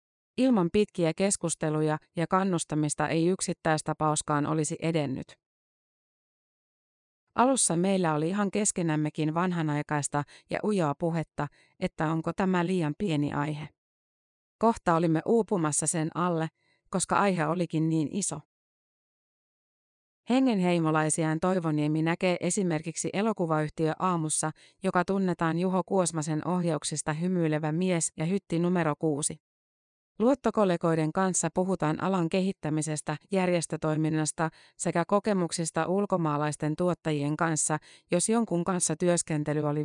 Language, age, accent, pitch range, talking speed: Finnish, 30-49, native, 155-185 Hz, 100 wpm